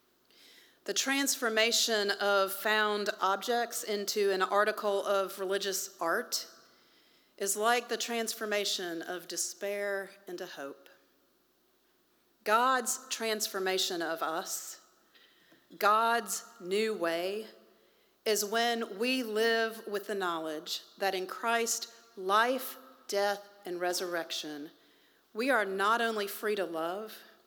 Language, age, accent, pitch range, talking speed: English, 40-59, American, 185-240 Hz, 105 wpm